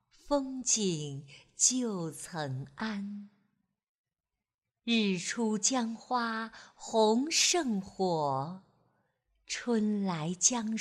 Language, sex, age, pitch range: Chinese, female, 50-69, 165-235 Hz